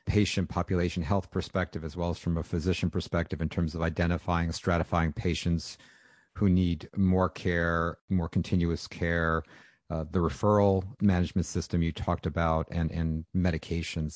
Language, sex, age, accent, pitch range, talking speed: English, male, 50-69, American, 85-100 Hz, 150 wpm